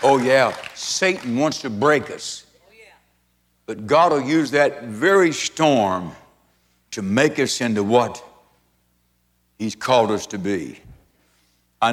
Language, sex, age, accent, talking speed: English, male, 60-79, American, 125 wpm